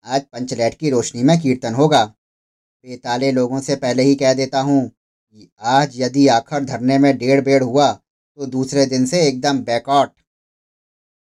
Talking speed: 155 wpm